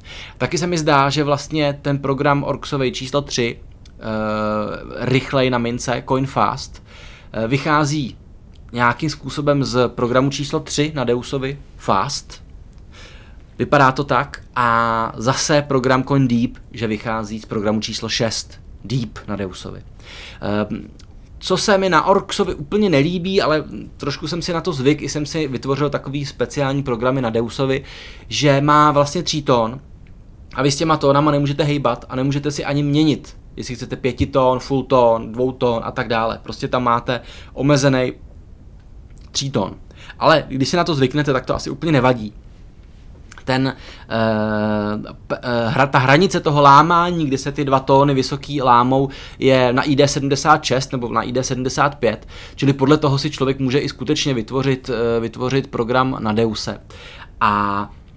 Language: Czech